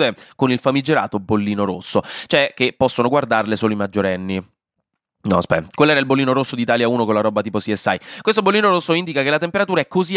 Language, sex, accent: Italian, male, native